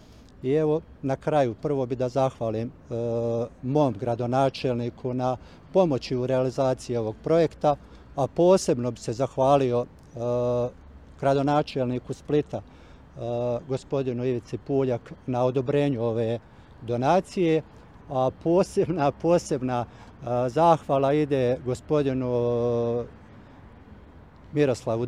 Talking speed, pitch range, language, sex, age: 100 wpm, 120-150 Hz, Croatian, male, 50-69